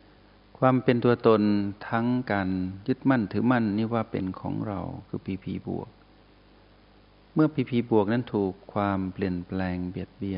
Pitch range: 95-115 Hz